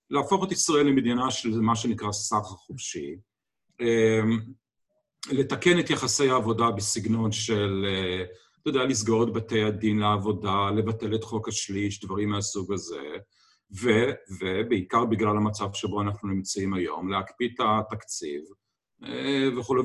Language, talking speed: Hebrew, 120 wpm